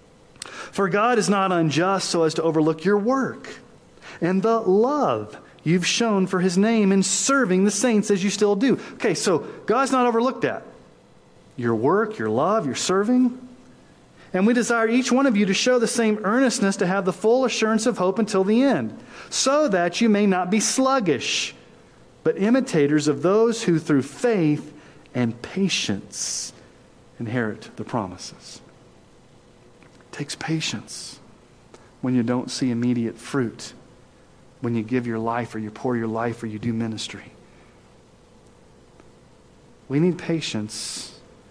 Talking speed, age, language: 150 wpm, 40-59, English